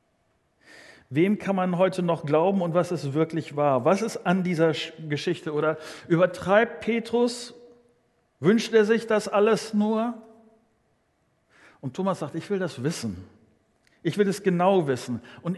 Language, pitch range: German, 155-210 Hz